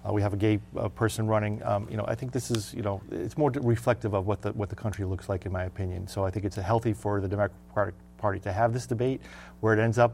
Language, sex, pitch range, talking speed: English, male, 100-115 Hz, 290 wpm